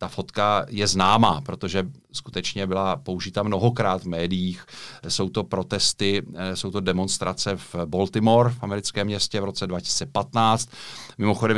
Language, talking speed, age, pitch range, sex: Czech, 135 wpm, 40-59, 85-95 Hz, male